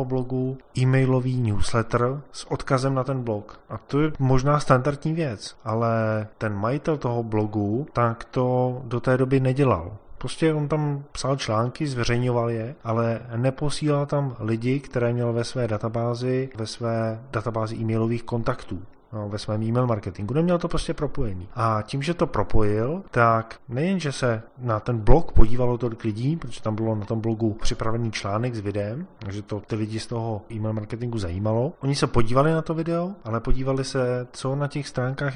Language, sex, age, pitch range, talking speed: Czech, male, 20-39, 110-135 Hz, 170 wpm